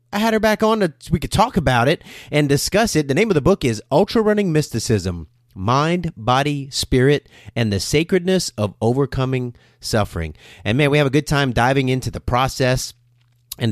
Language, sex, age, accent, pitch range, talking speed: English, male, 30-49, American, 110-150 Hz, 195 wpm